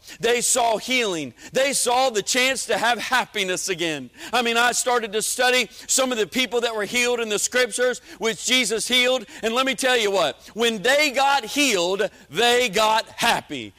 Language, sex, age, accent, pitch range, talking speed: English, male, 50-69, American, 220-260 Hz, 185 wpm